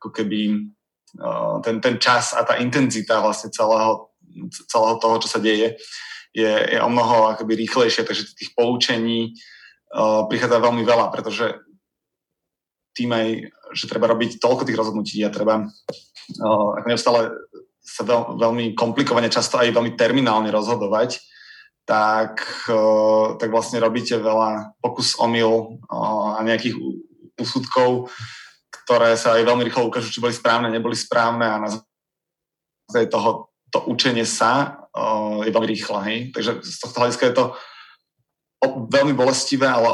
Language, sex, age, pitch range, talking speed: Czech, male, 20-39, 110-120 Hz, 140 wpm